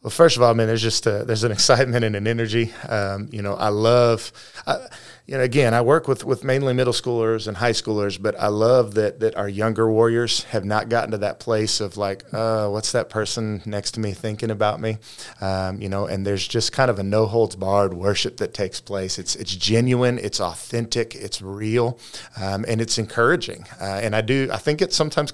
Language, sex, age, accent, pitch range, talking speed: English, male, 30-49, American, 105-125 Hz, 225 wpm